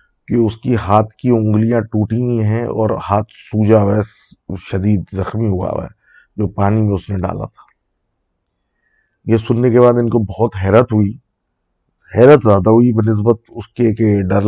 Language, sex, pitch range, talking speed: Urdu, male, 100-120 Hz, 170 wpm